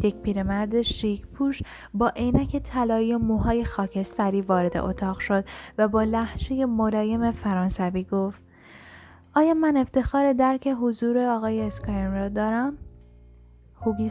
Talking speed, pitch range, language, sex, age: 120 wpm, 190-230 Hz, Persian, female, 10-29